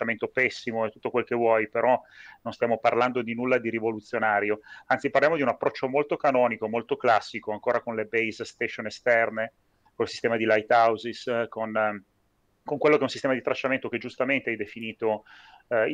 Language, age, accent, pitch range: Italian, 30-49, native, 110-125 Hz